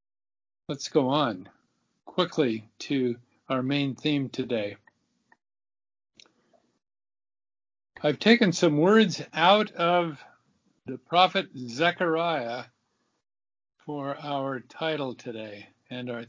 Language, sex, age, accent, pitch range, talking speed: English, male, 50-69, American, 125-170 Hz, 90 wpm